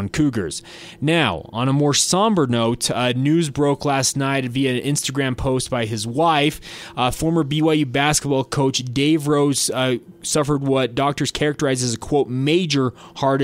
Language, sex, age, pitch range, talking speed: English, male, 20-39, 125-150 Hz, 160 wpm